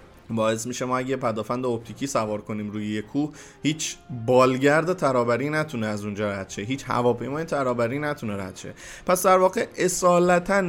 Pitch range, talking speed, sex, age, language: 115-155 Hz, 165 wpm, male, 20-39, Persian